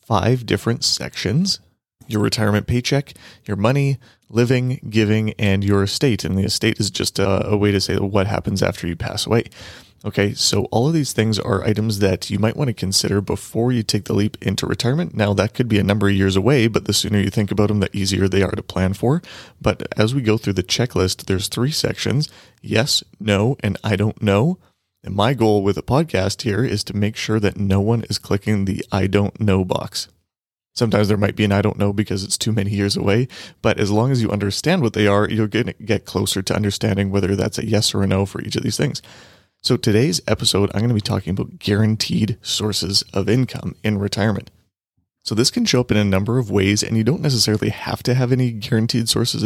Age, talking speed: 30-49, 225 wpm